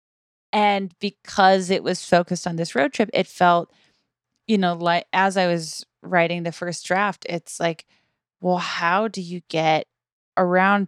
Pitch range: 170-200 Hz